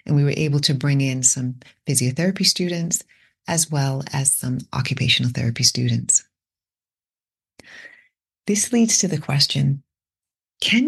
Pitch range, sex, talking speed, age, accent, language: 130-170 Hz, female, 125 wpm, 30-49, American, English